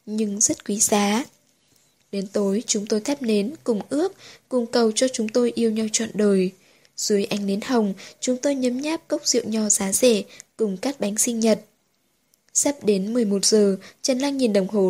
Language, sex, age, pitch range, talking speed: Vietnamese, female, 10-29, 205-245 Hz, 195 wpm